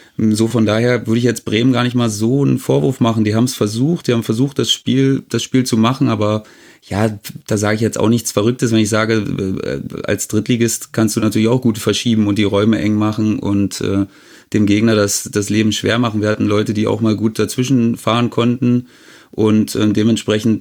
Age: 30-49